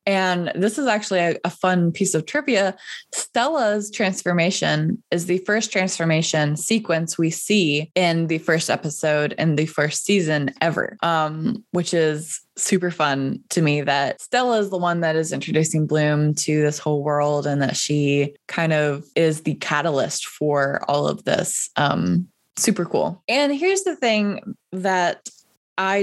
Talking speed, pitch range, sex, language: 160 wpm, 150-190 Hz, female, English